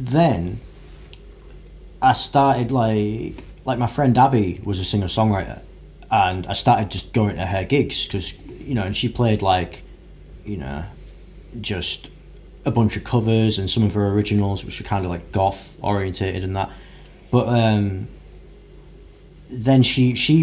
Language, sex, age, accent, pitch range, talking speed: English, male, 20-39, British, 95-125 Hz, 155 wpm